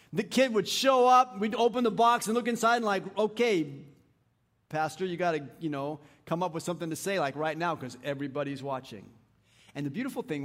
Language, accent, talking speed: English, American, 210 wpm